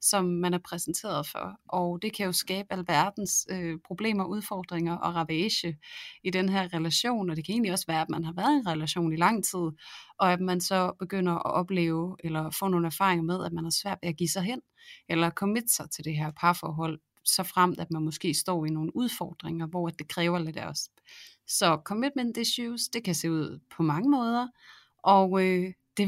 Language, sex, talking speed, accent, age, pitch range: Danish, female, 210 wpm, native, 30-49, 165-205 Hz